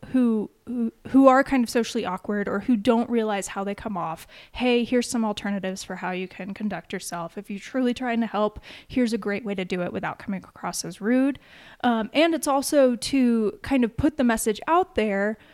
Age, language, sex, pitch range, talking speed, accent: 10-29, English, female, 200-260 Hz, 215 wpm, American